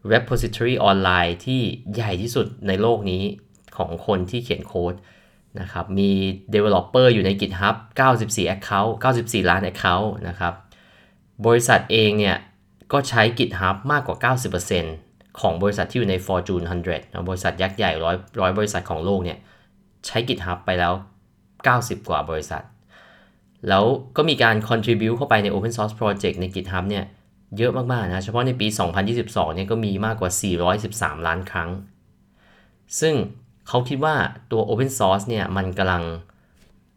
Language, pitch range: Thai, 90-115 Hz